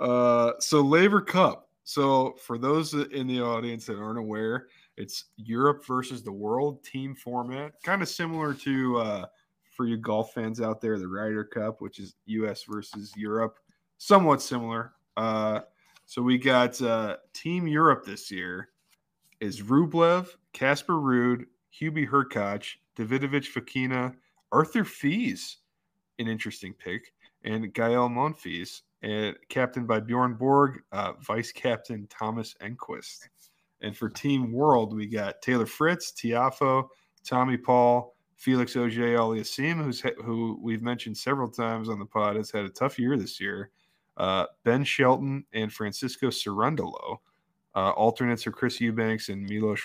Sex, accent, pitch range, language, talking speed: male, American, 110-140 Hz, English, 140 wpm